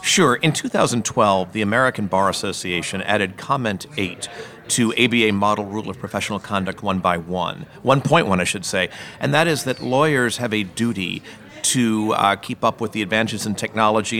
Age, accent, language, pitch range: 40-59, American, English, 100-125 Hz